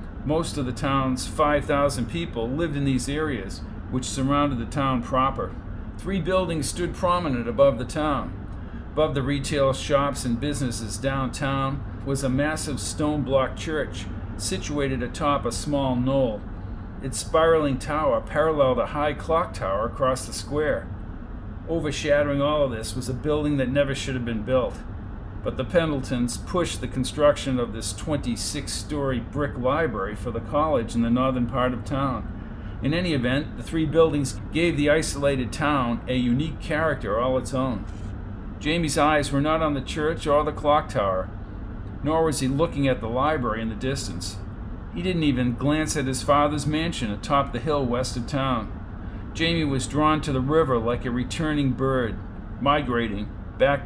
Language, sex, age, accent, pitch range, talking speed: English, male, 50-69, American, 110-145 Hz, 165 wpm